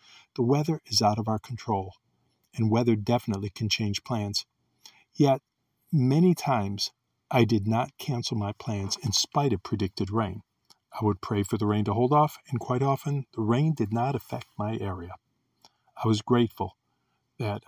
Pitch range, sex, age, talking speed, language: 105-125 Hz, male, 50-69, 170 wpm, English